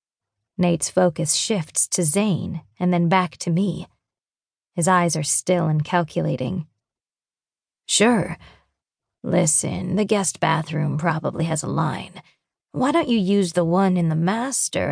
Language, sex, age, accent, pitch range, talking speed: English, female, 30-49, American, 160-190 Hz, 135 wpm